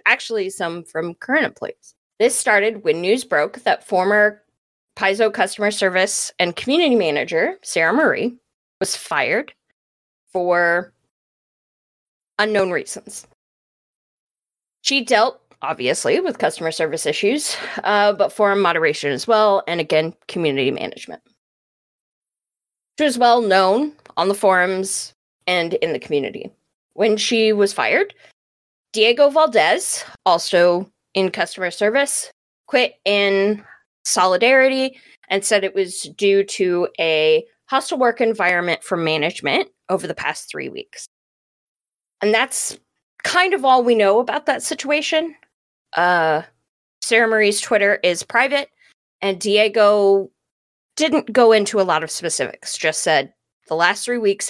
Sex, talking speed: female, 125 wpm